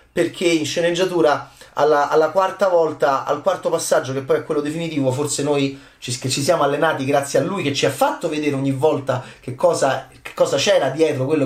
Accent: native